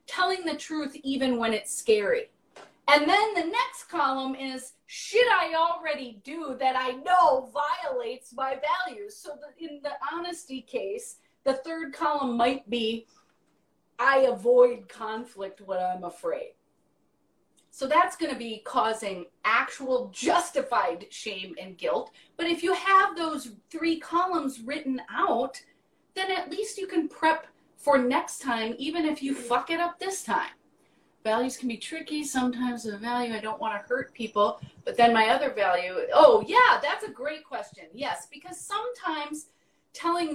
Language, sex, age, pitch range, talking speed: English, female, 30-49, 240-345 Hz, 155 wpm